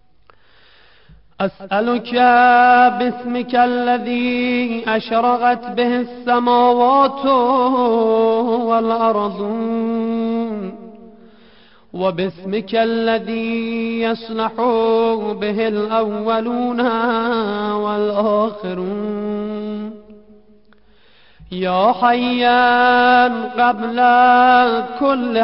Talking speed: 40 wpm